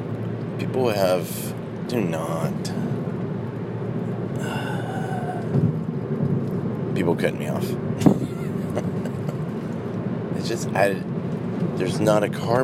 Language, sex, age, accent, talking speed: English, male, 30-49, American, 75 wpm